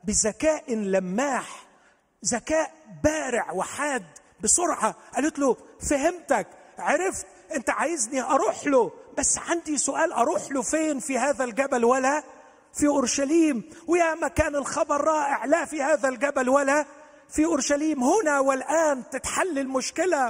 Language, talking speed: Arabic, 120 wpm